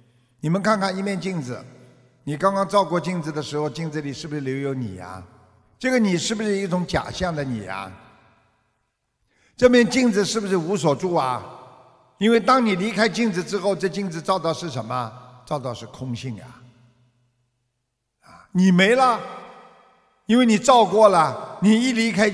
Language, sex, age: Chinese, male, 50-69